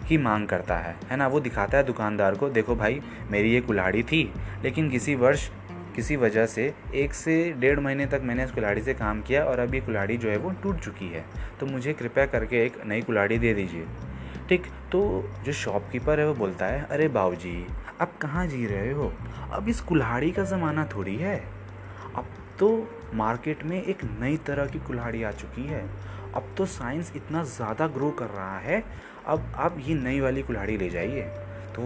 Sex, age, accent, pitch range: male, 20-39, native, 100-140 Hz